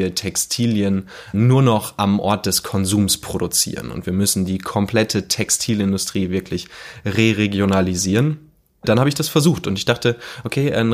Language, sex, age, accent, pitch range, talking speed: German, male, 20-39, German, 95-110 Hz, 145 wpm